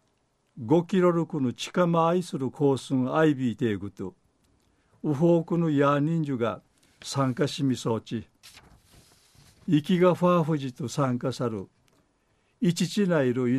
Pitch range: 125-160 Hz